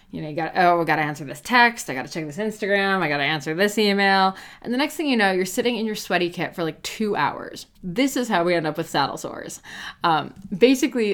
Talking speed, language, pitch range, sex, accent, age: 270 wpm, English, 160-195 Hz, female, American, 20-39